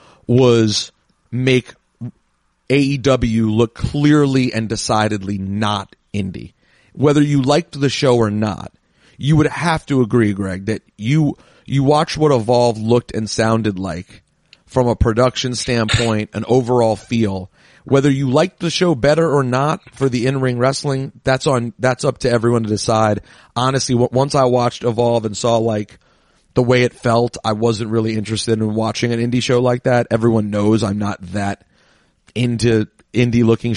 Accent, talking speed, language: American, 160 wpm, English